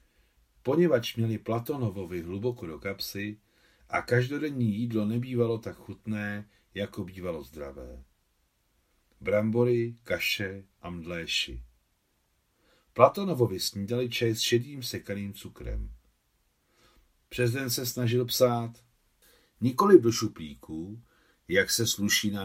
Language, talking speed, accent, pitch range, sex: Czech, 100 wpm, native, 90-120 Hz, male